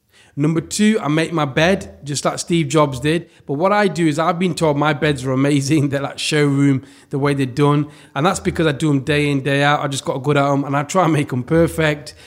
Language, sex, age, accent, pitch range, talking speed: English, male, 30-49, British, 135-165 Hz, 260 wpm